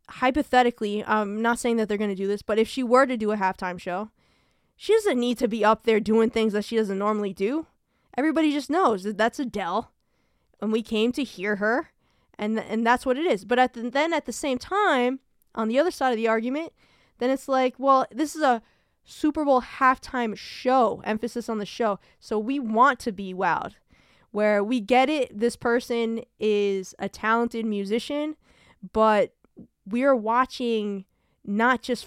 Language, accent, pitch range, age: English, American, 210-250 Hz, 10-29